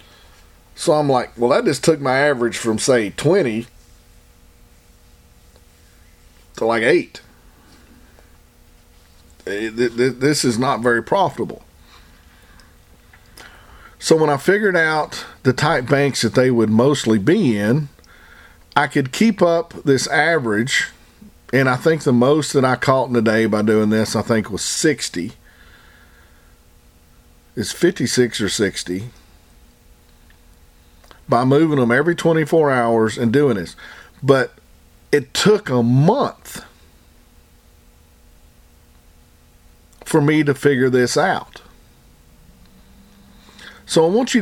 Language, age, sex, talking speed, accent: English, 40-59, male, 115 wpm, American